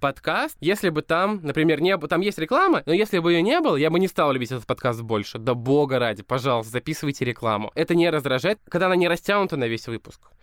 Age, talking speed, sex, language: 20-39, 225 wpm, male, Russian